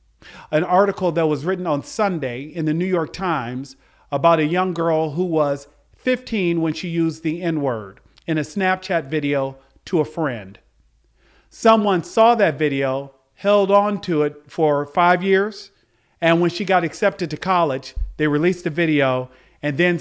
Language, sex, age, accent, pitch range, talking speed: English, male, 40-59, American, 155-200 Hz, 165 wpm